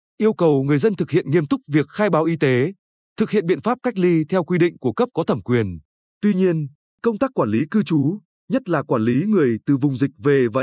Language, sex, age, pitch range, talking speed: Vietnamese, male, 20-39, 145-200 Hz, 255 wpm